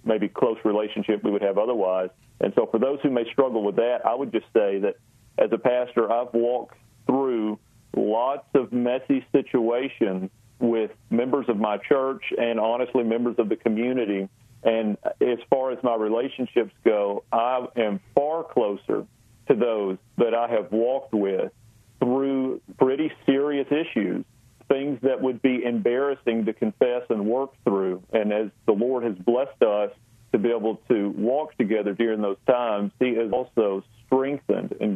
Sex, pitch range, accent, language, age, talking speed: male, 105-130 Hz, American, English, 40-59, 165 wpm